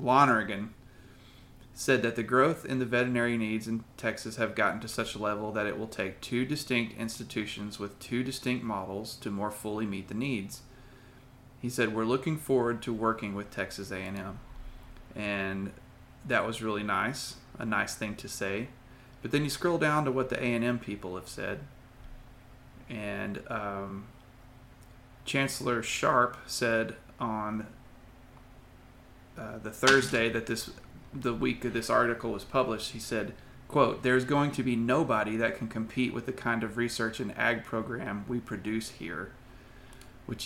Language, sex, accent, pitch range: English, male, American, 110-125 Hz